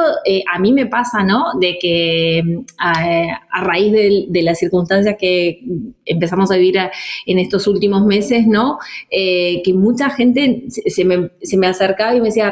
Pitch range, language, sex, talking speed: 180-220 Hz, Spanish, female, 170 wpm